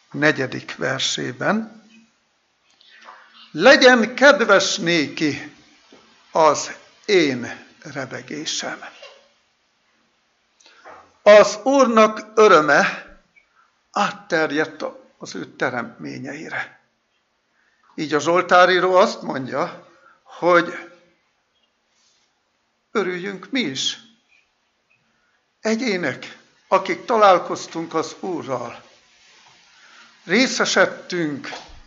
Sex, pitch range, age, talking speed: male, 140-215 Hz, 60-79, 55 wpm